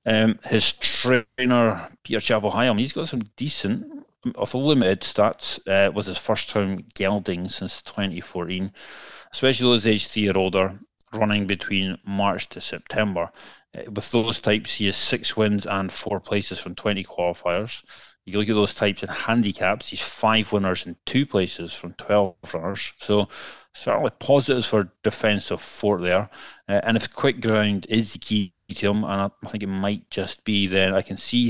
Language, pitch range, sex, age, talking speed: English, 95-110 Hz, male, 30-49, 170 wpm